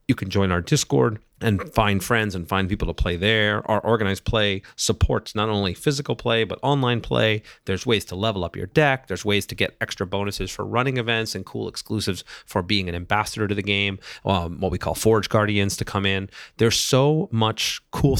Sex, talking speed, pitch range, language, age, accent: male, 210 wpm, 95-115 Hz, English, 30-49, American